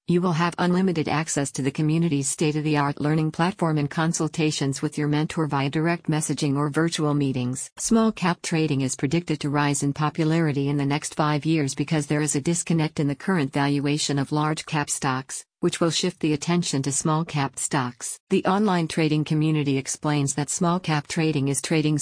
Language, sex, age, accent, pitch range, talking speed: English, female, 50-69, American, 140-165 Hz, 175 wpm